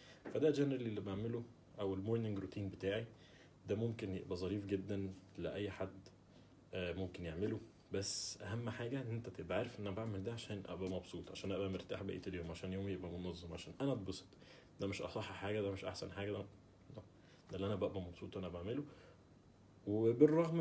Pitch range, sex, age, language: 95-110 Hz, male, 30-49, Arabic